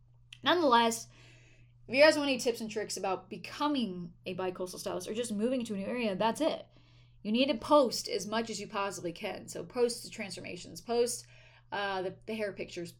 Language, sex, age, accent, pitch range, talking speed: English, female, 20-39, American, 170-240 Hz, 200 wpm